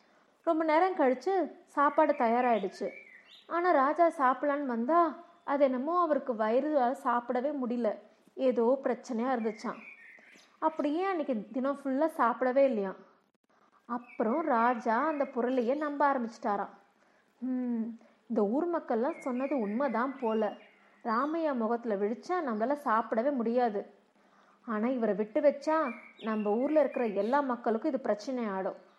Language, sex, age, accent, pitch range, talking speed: Tamil, female, 30-49, native, 220-285 Hz, 110 wpm